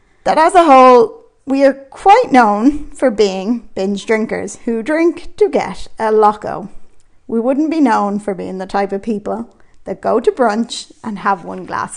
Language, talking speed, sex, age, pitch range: English, 180 wpm, female, 30-49, 200-265 Hz